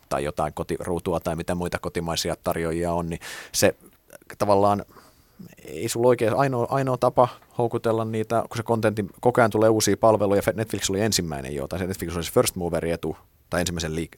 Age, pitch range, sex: 30-49, 85-110 Hz, male